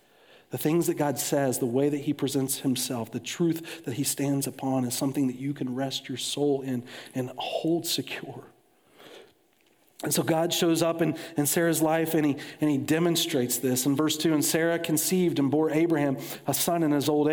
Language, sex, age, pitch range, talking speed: English, male, 40-59, 135-155 Hz, 195 wpm